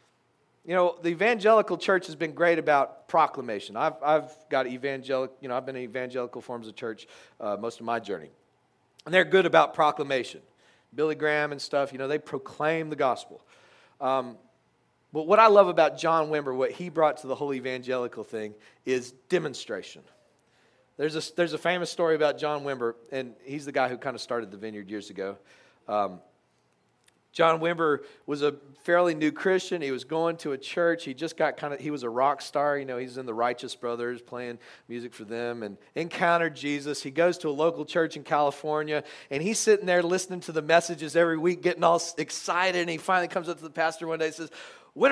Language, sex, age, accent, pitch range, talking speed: English, male, 40-59, American, 130-175 Hz, 205 wpm